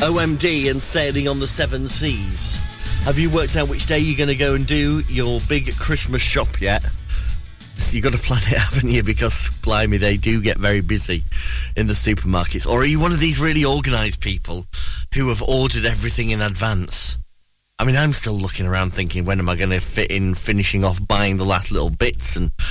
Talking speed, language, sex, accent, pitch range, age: 205 wpm, English, male, British, 90-130 Hz, 30-49